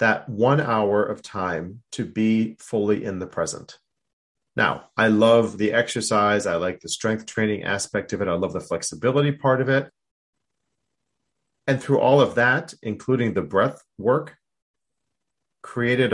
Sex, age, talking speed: male, 30-49, 150 wpm